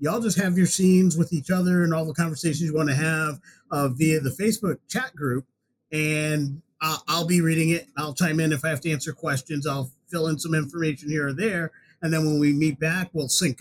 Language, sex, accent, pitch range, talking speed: English, male, American, 140-175 Hz, 235 wpm